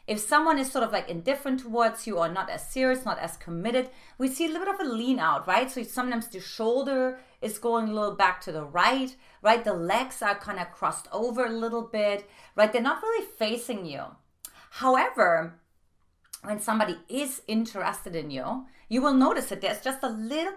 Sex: female